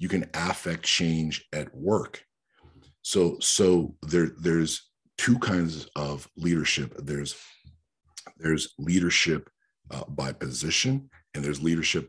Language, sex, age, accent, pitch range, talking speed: English, male, 50-69, American, 70-85 Hz, 115 wpm